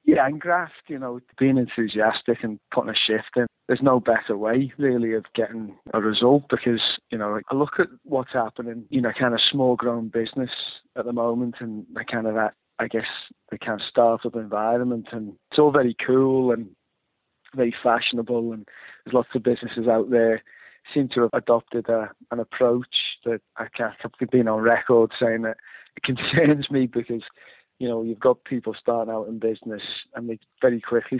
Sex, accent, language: male, British, English